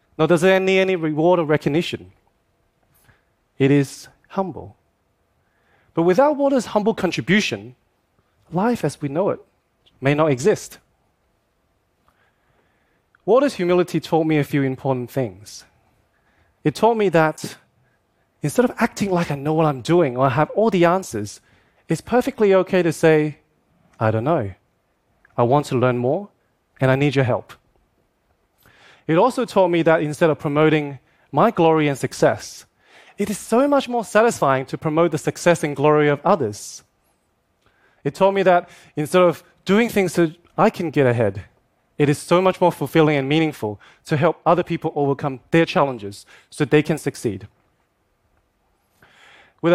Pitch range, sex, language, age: 135-180 Hz, male, Korean, 30-49